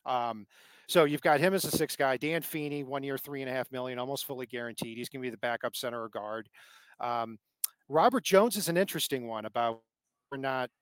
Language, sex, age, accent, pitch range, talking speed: English, male, 40-59, American, 125-165 Hz, 220 wpm